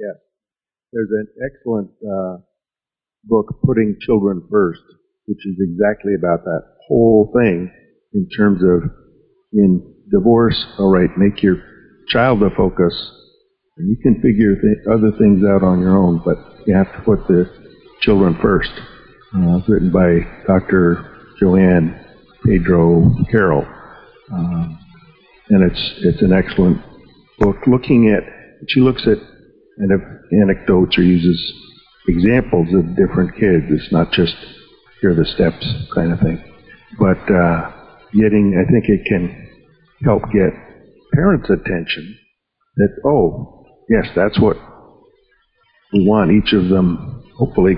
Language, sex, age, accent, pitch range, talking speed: English, male, 50-69, American, 90-115 Hz, 135 wpm